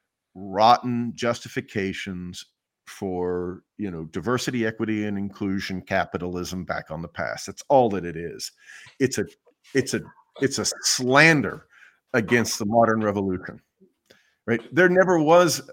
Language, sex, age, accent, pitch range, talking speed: English, male, 50-69, American, 95-130 Hz, 130 wpm